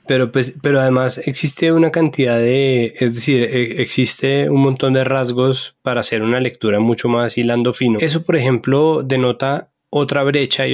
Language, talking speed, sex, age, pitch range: Spanish, 170 wpm, male, 20-39, 115-135 Hz